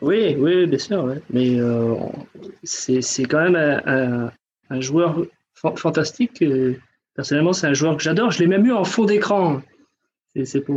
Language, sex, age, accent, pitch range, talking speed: French, male, 30-49, French, 145-195 Hz, 190 wpm